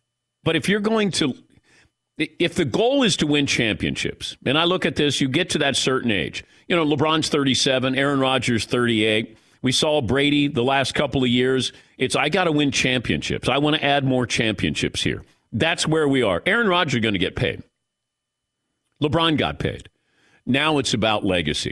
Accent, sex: American, male